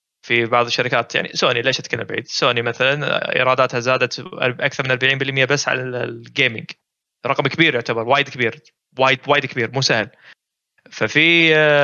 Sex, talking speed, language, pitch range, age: male, 145 wpm, Arabic, 130-180 Hz, 20-39